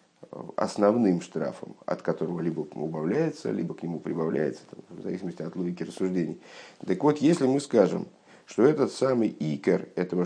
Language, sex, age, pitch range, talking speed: Russian, male, 50-69, 90-120 Hz, 145 wpm